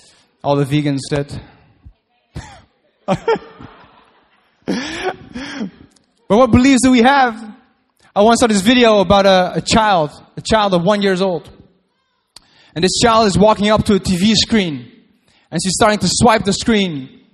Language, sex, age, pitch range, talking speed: English, male, 20-39, 195-235 Hz, 145 wpm